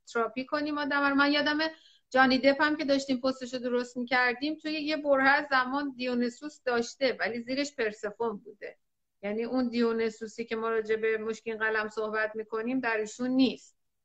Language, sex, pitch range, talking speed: Persian, female, 225-280 Hz, 150 wpm